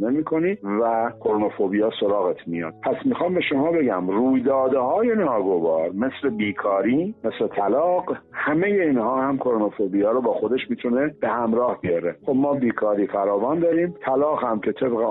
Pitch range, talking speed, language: 105-165 Hz, 145 wpm, Persian